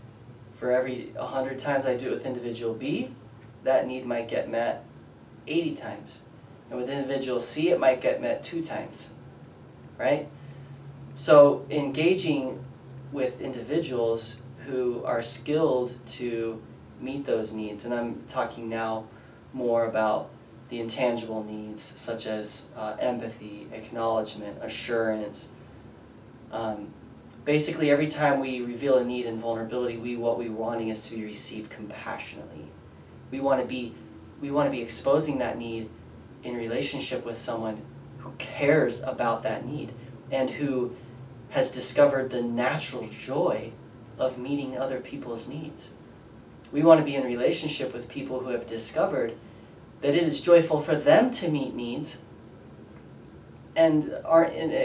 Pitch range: 115-140 Hz